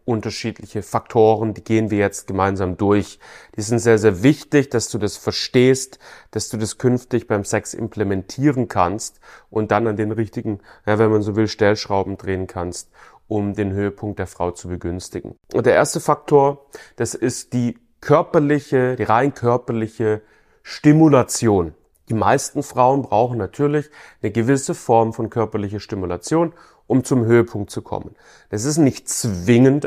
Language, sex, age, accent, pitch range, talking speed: German, male, 30-49, German, 100-125 Hz, 155 wpm